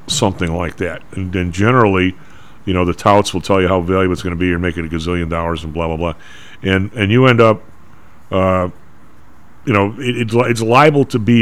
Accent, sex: American, male